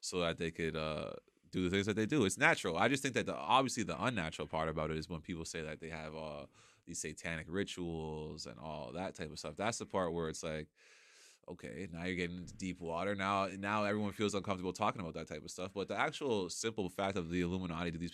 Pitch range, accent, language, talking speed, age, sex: 80-105 Hz, American, English, 250 wpm, 20-39, male